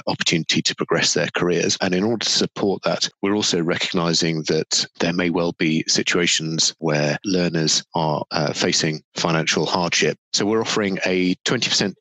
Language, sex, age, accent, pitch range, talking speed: English, male, 30-49, British, 80-90 Hz, 160 wpm